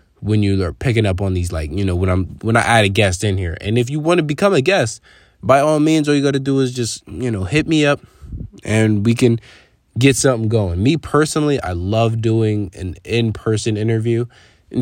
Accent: American